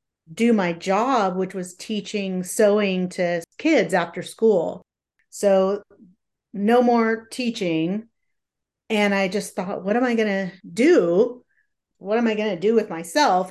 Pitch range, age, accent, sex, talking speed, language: 185-235 Hz, 40-59, American, female, 140 wpm, English